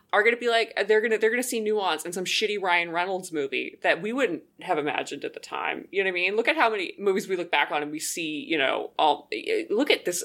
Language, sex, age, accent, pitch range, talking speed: English, female, 20-39, American, 160-235 Hz, 295 wpm